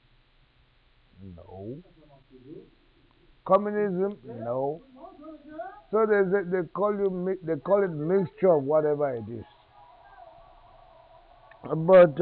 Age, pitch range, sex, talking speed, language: 50-69, 125-180 Hz, male, 95 wpm, English